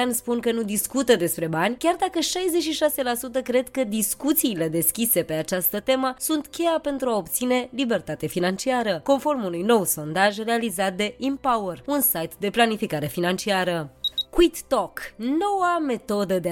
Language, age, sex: Romanian, 20-39, female